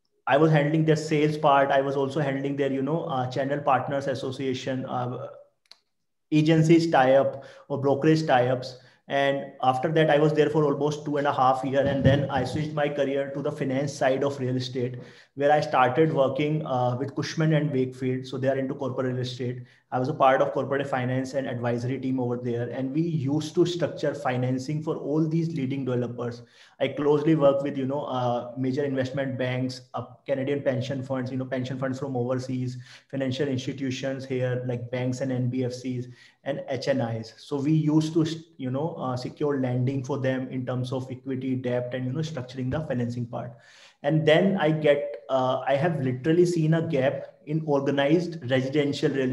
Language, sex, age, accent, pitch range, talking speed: English, male, 30-49, Indian, 130-150 Hz, 190 wpm